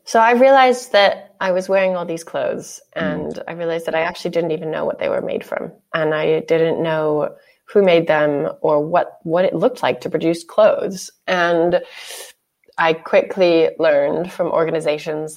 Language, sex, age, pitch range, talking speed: English, female, 20-39, 160-230 Hz, 180 wpm